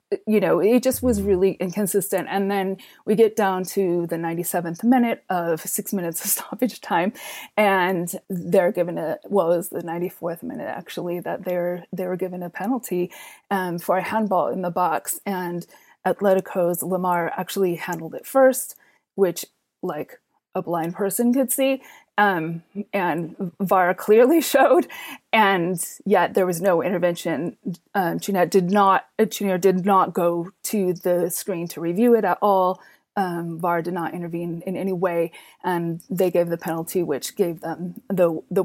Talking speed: 160 wpm